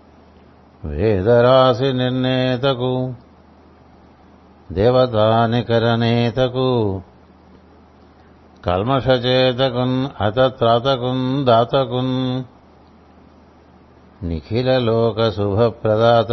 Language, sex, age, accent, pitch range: Telugu, male, 60-79, native, 90-130 Hz